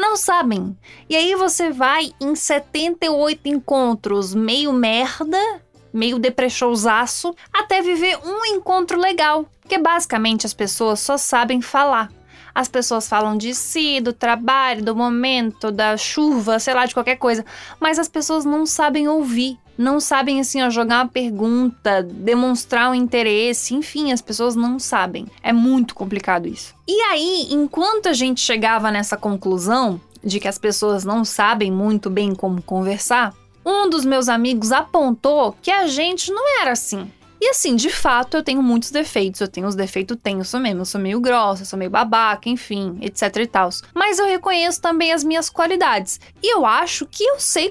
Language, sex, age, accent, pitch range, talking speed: Portuguese, female, 20-39, Brazilian, 220-310 Hz, 165 wpm